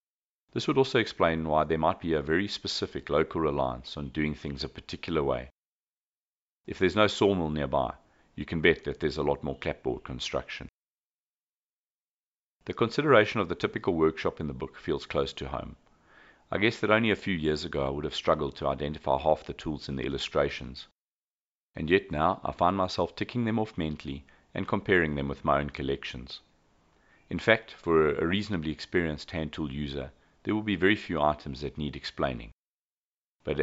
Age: 40-59